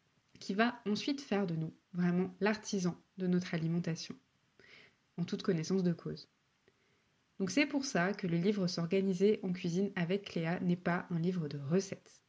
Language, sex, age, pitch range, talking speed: French, female, 20-39, 180-220 Hz, 165 wpm